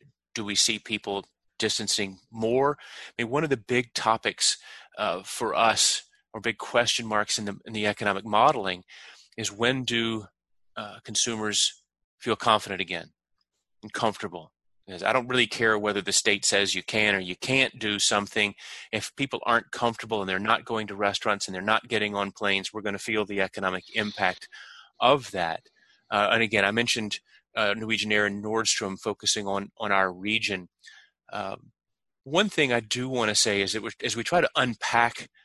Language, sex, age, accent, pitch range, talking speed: English, male, 30-49, American, 100-115 Hz, 185 wpm